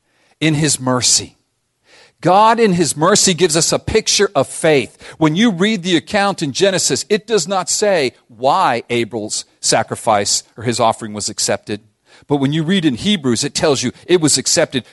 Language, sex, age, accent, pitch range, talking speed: English, male, 40-59, American, 120-175 Hz, 175 wpm